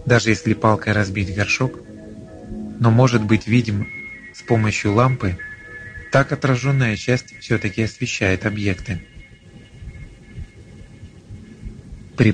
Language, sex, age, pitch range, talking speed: Russian, male, 30-49, 100-125 Hz, 90 wpm